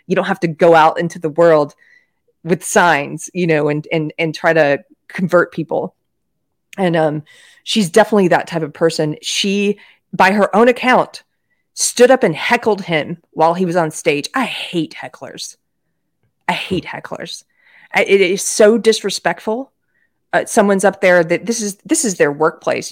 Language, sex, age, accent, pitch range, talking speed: English, female, 30-49, American, 165-225 Hz, 170 wpm